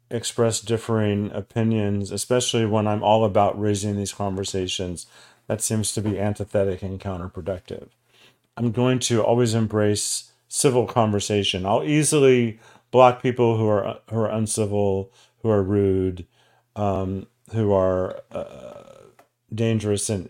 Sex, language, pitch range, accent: male, English, 100-125 Hz, American